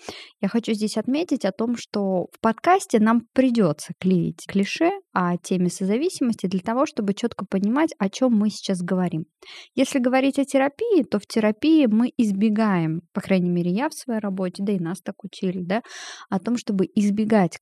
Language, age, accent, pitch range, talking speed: Russian, 20-39, native, 195-250 Hz, 175 wpm